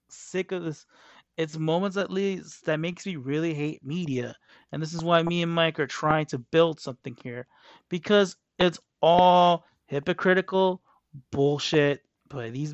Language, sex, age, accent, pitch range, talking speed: English, male, 30-49, American, 135-165 Hz, 155 wpm